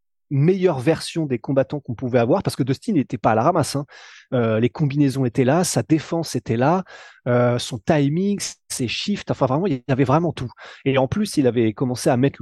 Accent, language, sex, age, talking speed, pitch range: French, French, male, 20-39, 220 wpm, 125-160 Hz